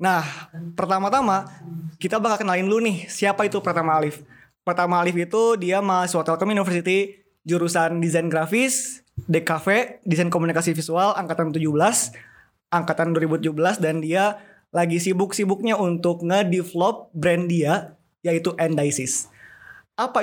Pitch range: 165-195 Hz